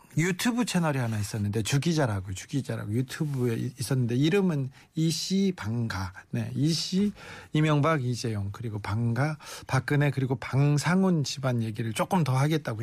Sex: male